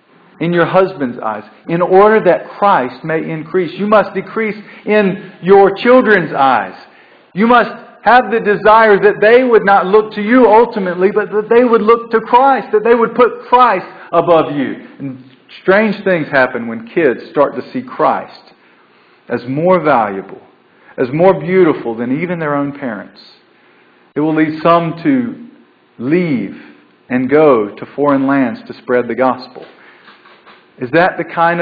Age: 50-69